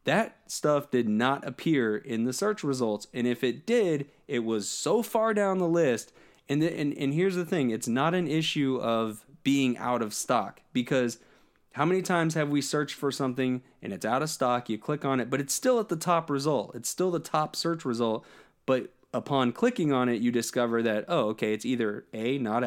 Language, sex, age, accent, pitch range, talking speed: English, male, 20-39, American, 120-160 Hz, 215 wpm